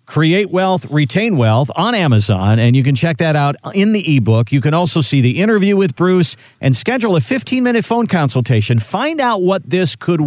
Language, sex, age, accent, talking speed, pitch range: English, male, 50-69, American, 200 wpm, 120-165 Hz